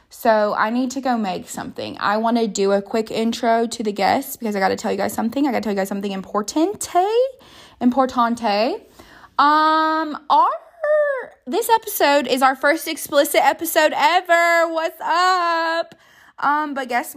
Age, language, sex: 20-39, English, female